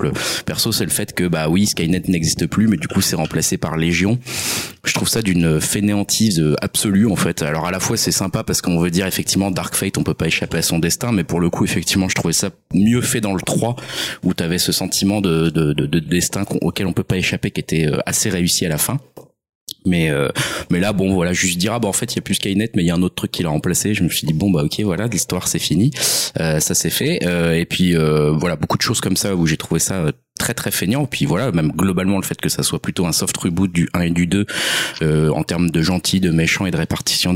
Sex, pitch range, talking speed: male, 80-95 Hz, 270 wpm